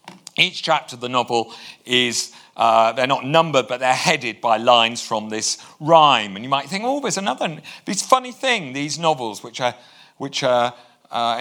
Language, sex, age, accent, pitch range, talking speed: English, male, 50-69, British, 110-165 Hz, 185 wpm